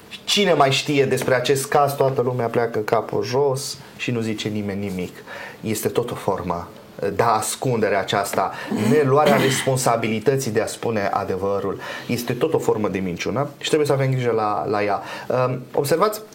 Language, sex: Romanian, male